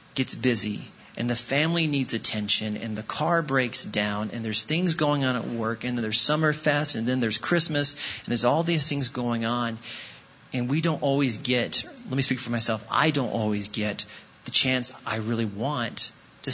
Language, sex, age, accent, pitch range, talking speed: English, male, 30-49, American, 115-155 Hz, 195 wpm